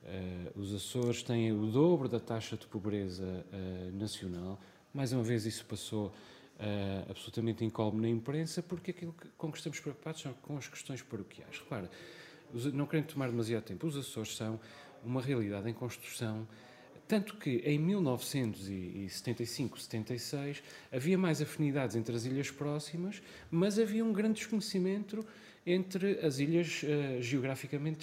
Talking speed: 145 wpm